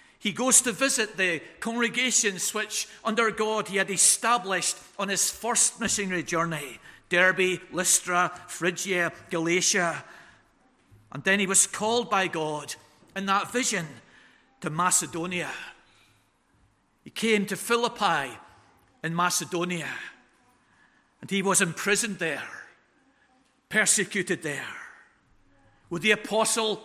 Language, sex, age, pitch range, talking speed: English, male, 50-69, 175-220 Hz, 110 wpm